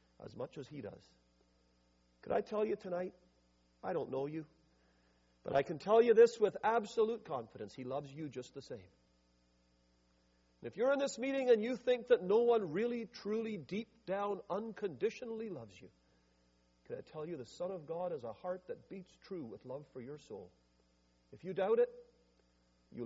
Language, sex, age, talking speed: English, male, 50-69, 185 wpm